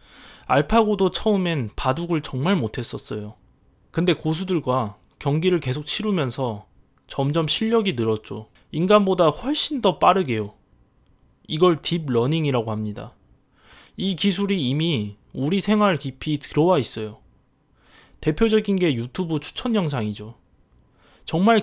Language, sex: Korean, male